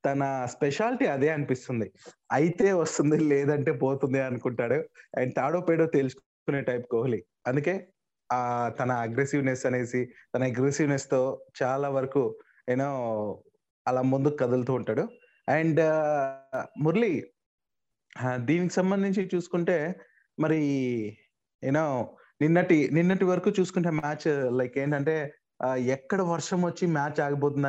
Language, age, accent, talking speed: Telugu, 20-39, native, 105 wpm